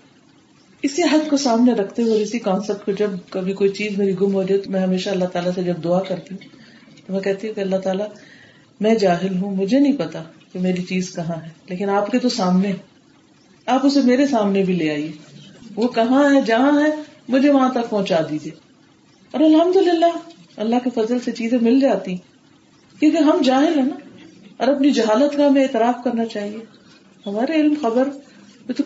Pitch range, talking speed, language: 190-280 Hz, 200 wpm, Urdu